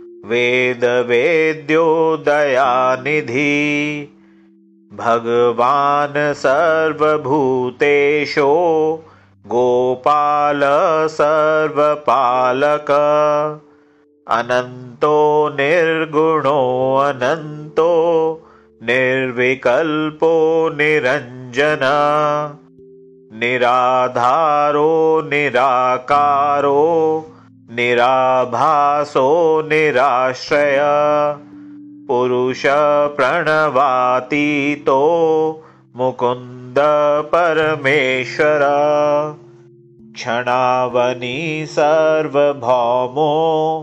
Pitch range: 125-155 Hz